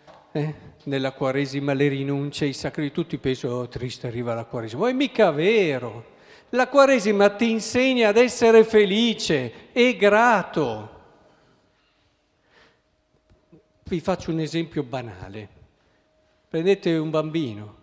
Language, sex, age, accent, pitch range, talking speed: Italian, male, 50-69, native, 125-190 Hz, 120 wpm